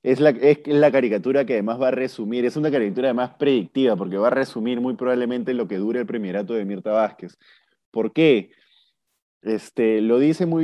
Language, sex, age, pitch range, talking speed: Spanish, male, 20-39, 115-140 Hz, 195 wpm